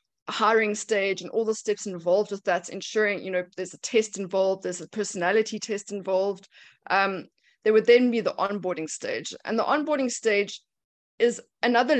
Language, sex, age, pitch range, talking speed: English, female, 20-39, 195-240 Hz, 175 wpm